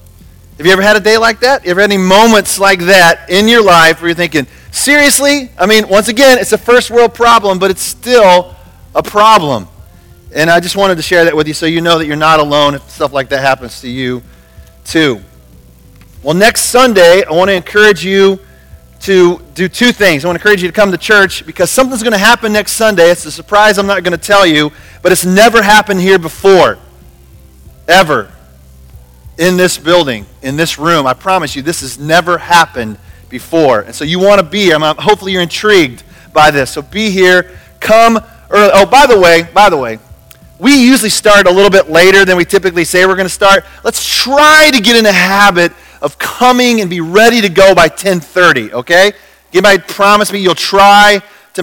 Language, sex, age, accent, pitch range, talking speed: English, male, 40-59, American, 155-205 Hz, 210 wpm